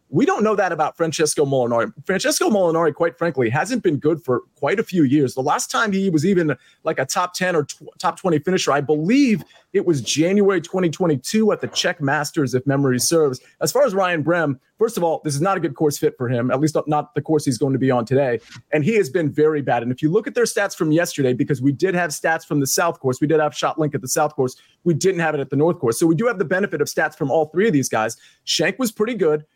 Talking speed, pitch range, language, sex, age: 270 wpm, 145-185 Hz, English, male, 30-49